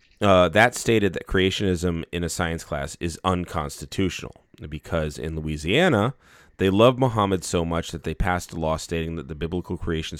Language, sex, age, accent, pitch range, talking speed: English, male, 30-49, American, 80-105 Hz, 170 wpm